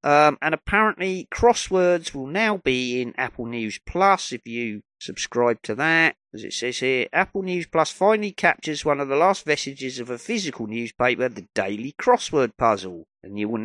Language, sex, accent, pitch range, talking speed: English, male, British, 110-155 Hz, 180 wpm